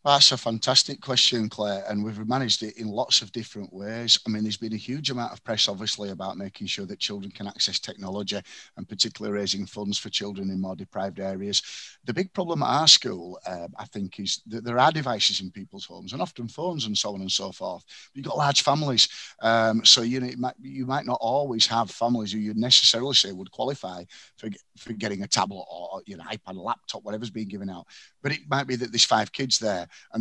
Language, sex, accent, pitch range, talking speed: English, male, British, 100-120 Hz, 230 wpm